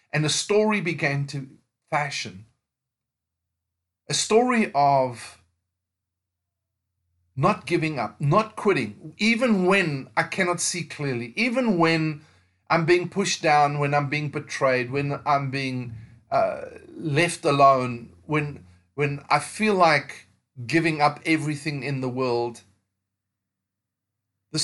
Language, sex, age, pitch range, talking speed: English, male, 40-59, 115-165 Hz, 115 wpm